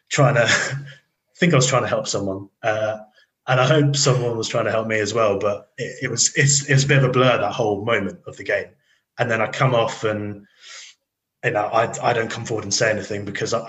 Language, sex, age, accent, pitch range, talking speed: English, male, 20-39, British, 105-125 Hz, 245 wpm